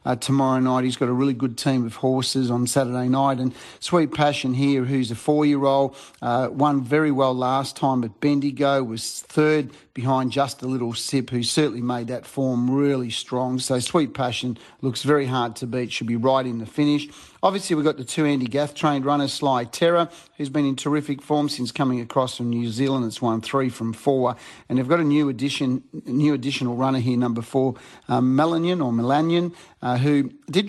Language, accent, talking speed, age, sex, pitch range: English, Australian, 200 wpm, 40-59, male, 125-145 Hz